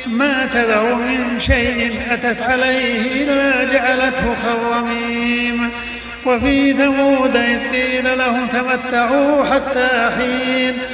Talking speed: 90 wpm